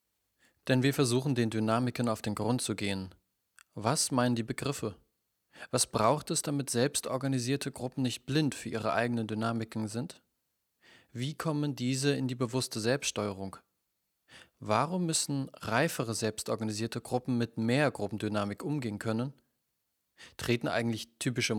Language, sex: German, male